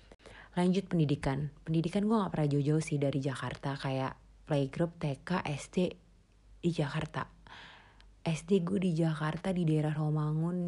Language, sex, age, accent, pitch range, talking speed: Indonesian, female, 30-49, native, 145-165 Hz, 130 wpm